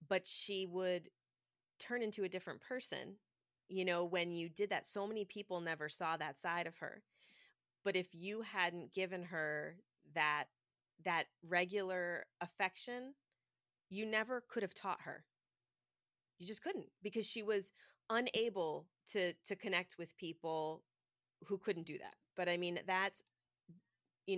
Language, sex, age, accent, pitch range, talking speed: English, female, 30-49, American, 170-200 Hz, 150 wpm